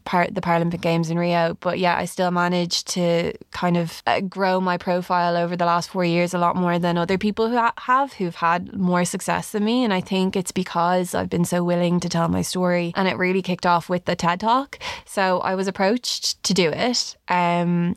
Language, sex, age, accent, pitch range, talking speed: English, female, 20-39, Irish, 175-195 Hz, 220 wpm